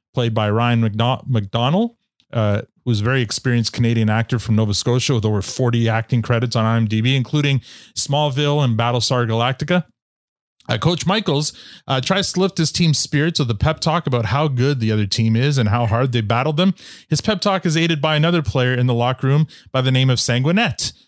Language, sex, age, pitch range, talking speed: English, male, 30-49, 115-150 Hz, 200 wpm